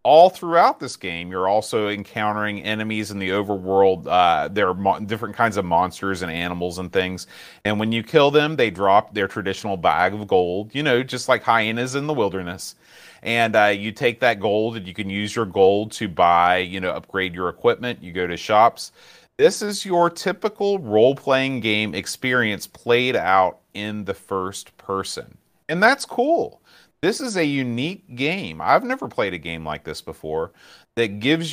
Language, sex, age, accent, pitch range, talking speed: English, male, 30-49, American, 95-130 Hz, 185 wpm